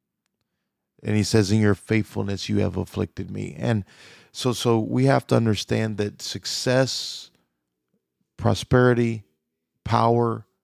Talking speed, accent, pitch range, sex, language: 120 wpm, American, 100-120 Hz, male, English